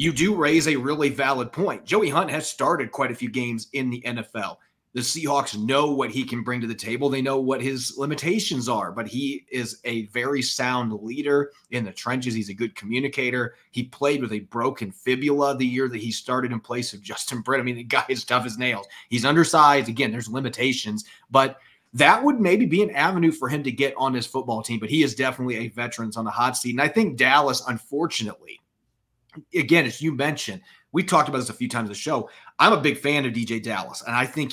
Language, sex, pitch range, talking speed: English, male, 115-140 Hz, 230 wpm